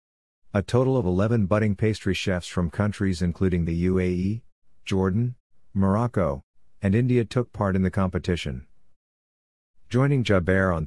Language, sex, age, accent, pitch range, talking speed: English, male, 50-69, American, 85-105 Hz, 130 wpm